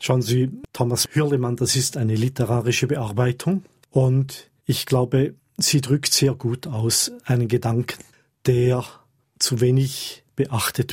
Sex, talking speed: male, 125 wpm